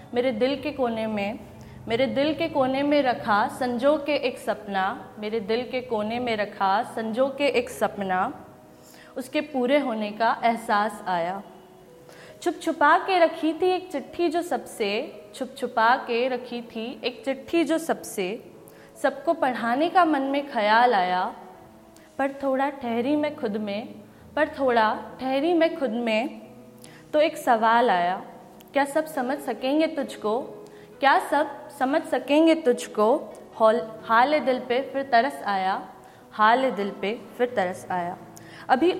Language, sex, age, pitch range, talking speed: Hindi, female, 20-39, 225-295 Hz, 150 wpm